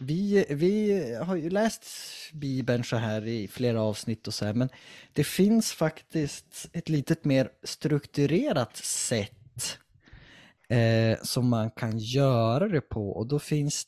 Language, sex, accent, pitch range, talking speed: Swedish, male, Norwegian, 115-155 Hz, 145 wpm